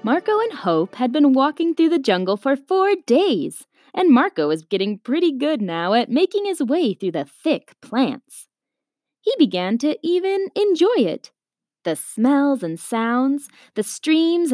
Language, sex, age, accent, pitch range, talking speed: English, female, 20-39, American, 205-315 Hz, 160 wpm